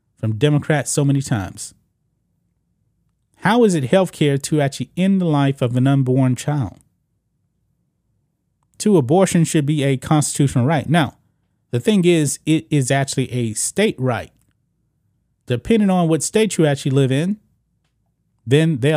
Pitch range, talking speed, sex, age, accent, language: 125-170 Hz, 140 wpm, male, 30-49, American, English